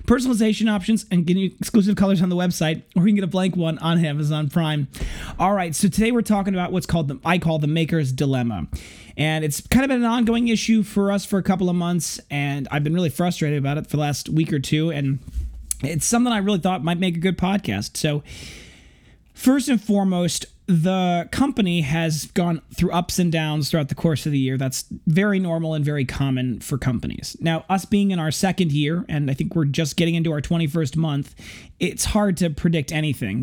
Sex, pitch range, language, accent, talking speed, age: male, 145-185 Hz, English, American, 215 wpm, 30-49